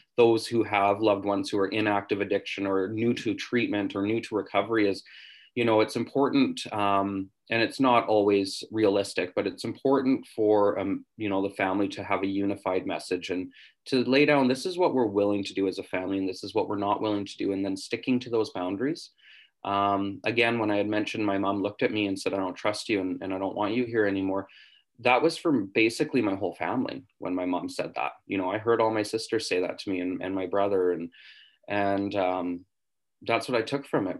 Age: 20-39